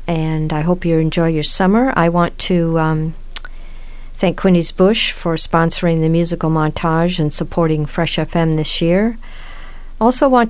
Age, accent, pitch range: 60-79, American, 155-185 Hz